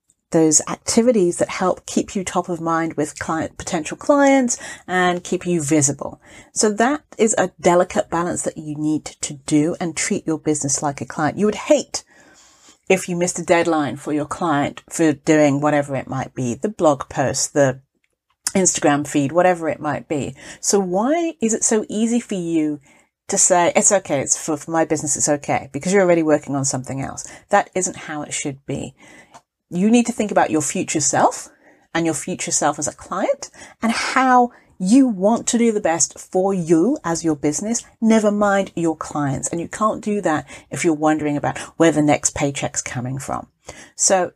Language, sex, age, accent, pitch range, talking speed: English, female, 40-59, British, 150-215 Hz, 190 wpm